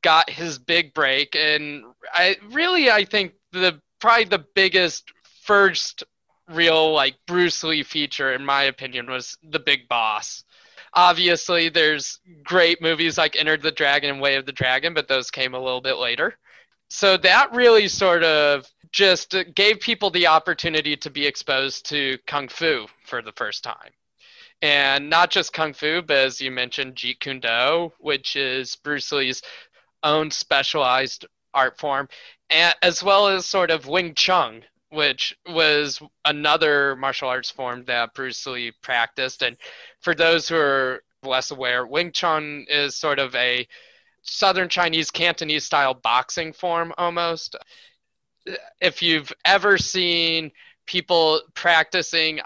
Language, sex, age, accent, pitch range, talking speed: English, male, 20-39, American, 140-175 Hz, 150 wpm